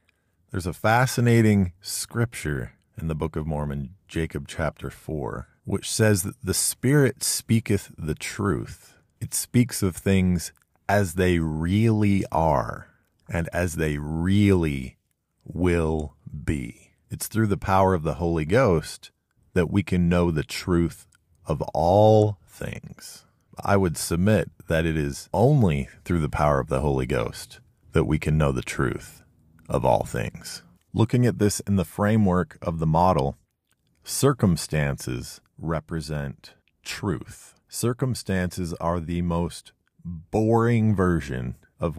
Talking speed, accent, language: 135 wpm, American, English